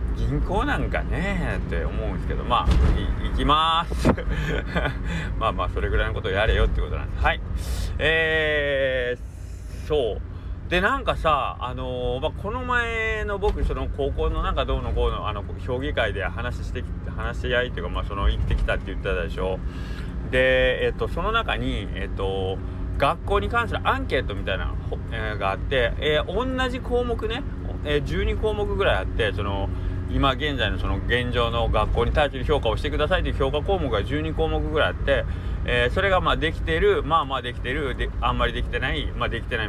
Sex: male